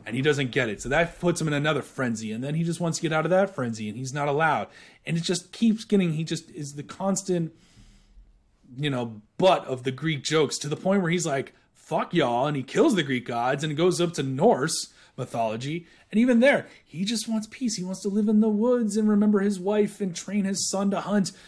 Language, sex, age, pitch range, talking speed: English, male, 30-49, 130-190 Hz, 245 wpm